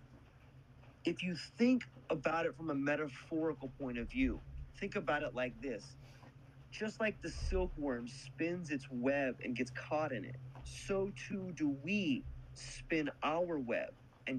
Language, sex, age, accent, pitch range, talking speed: English, male, 30-49, American, 130-175 Hz, 150 wpm